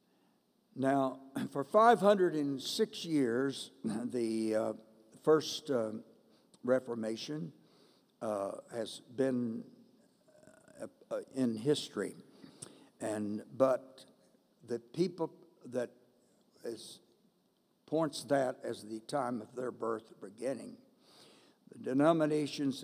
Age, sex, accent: 60-79, male, American